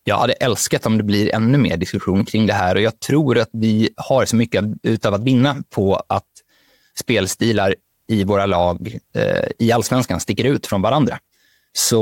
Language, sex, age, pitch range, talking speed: Swedish, male, 20-39, 105-130 Hz, 185 wpm